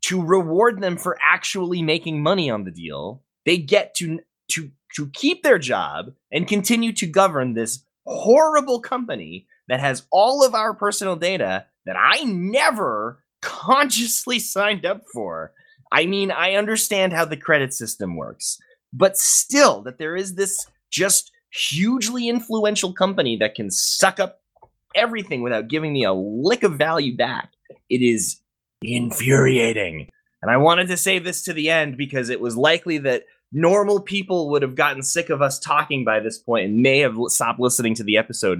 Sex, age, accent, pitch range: male, 20-39, American, 150-235 Hz